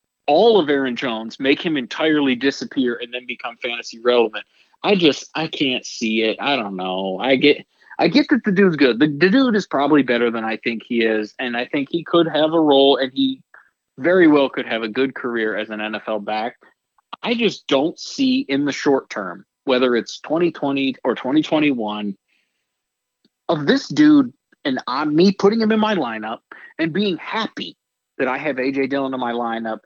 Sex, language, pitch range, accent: male, English, 120-175 Hz, American